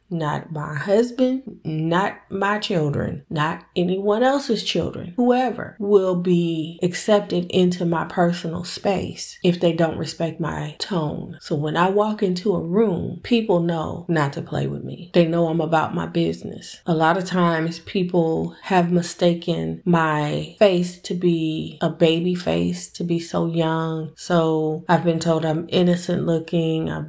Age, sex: 20-39, female